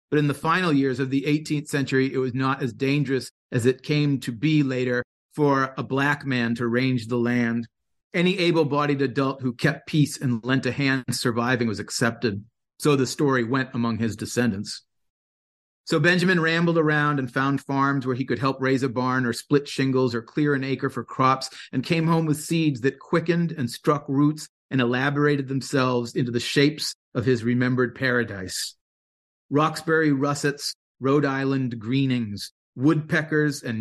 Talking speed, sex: 175 wpm, male